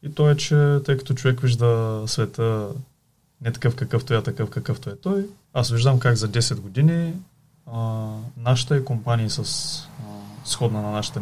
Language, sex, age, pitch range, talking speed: Bulgarian, male, 20-39, 110-140 Hz, 170 wpm